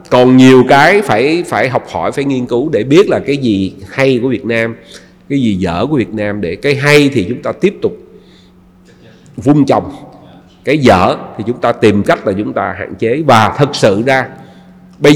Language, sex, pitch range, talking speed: Vietnamese, male, 115-170 Hz, 205 wpm